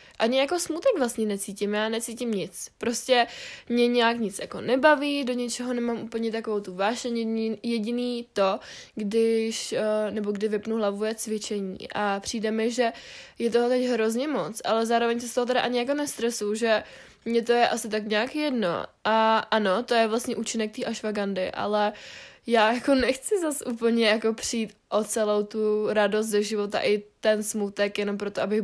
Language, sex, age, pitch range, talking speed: Czech, female, 20-39, 210-245 Hz, 175 wpm